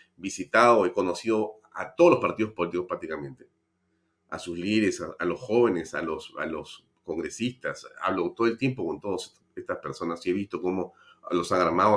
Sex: male